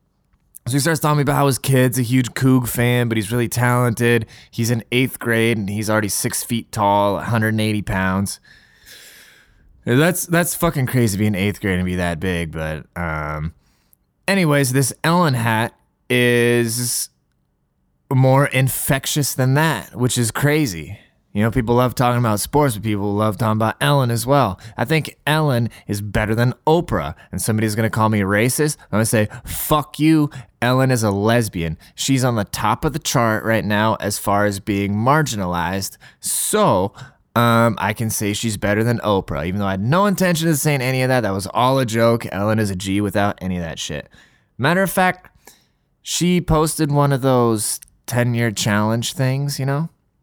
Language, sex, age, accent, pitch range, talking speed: English, male, 20-39, American, 105-135 Hz, 185 wpm